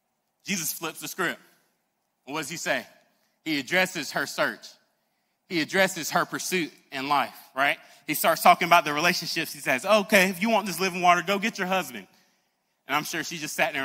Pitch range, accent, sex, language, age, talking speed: 165-200 Hz, American, male, English, 20-39, 195 wpm